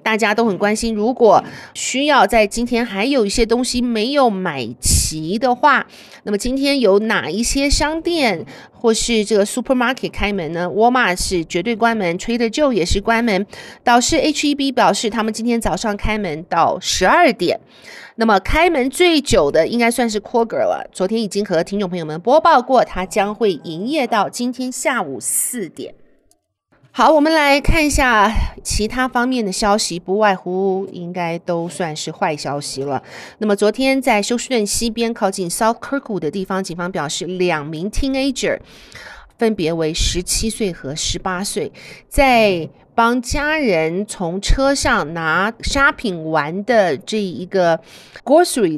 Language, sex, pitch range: Chinese, female, 185-250 Hz